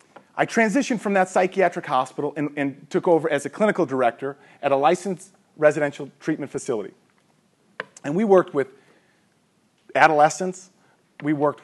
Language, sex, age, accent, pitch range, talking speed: English, male, 40-59, American, 135-185 Hz, 140 wpm